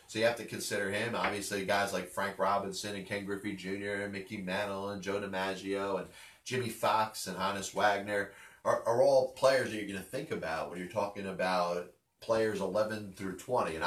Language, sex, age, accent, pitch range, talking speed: English, male, 30-49, American, 100-115 Hz, 200 wpm